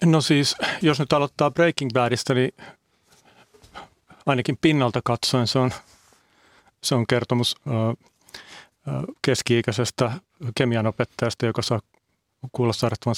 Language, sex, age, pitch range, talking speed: Finnish, male, 40-59, 110-125 Hz, 105 wpm